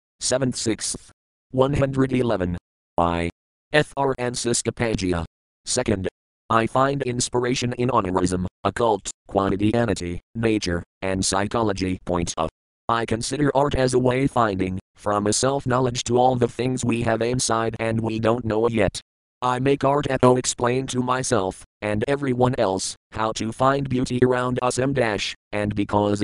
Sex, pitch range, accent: male, 95-125 Hz, American